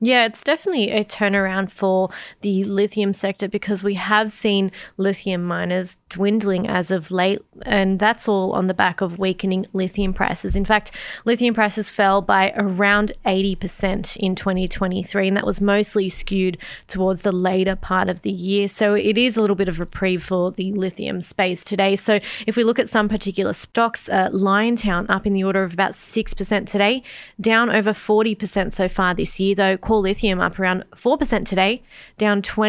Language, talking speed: English, 175 wpm